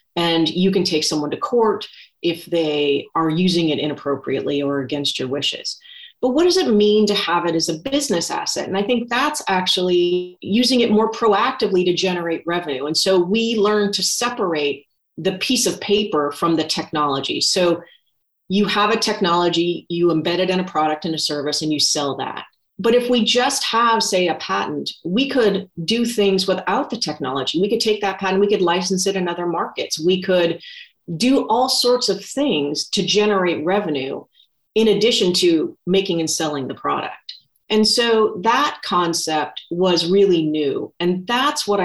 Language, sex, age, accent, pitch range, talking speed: English, female, 30-49, American, 165-215 Hz, 180 wpm